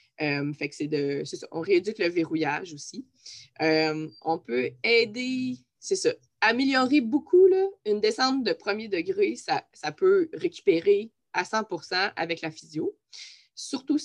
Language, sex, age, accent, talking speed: French, female, 20-39, Canadian, 125 wpm